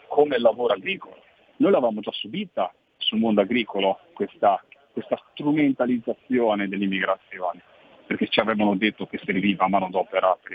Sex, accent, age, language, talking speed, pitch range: male, native, 40-59, Italian, 140 wpm, 100-155 Hz